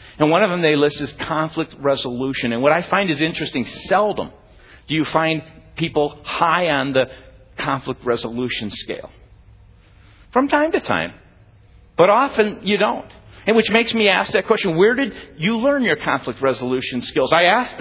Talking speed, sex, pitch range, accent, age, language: 170 wpm, male, 120-170 Hz, American, 50-69, English